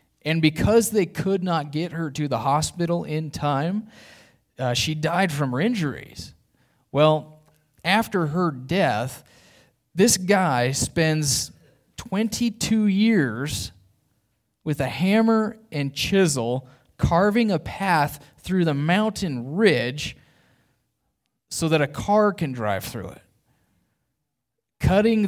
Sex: male